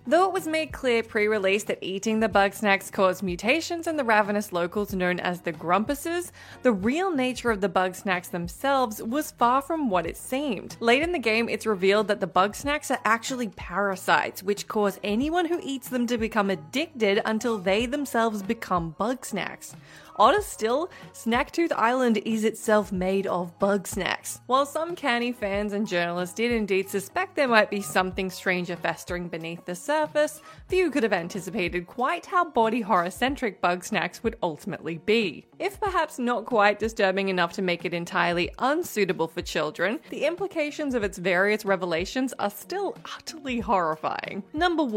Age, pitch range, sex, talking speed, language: 20-39, 190-260 Hz, female, 175 wpm, English